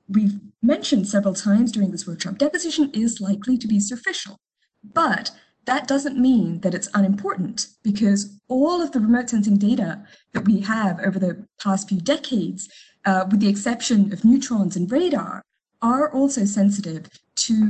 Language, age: English, 20-39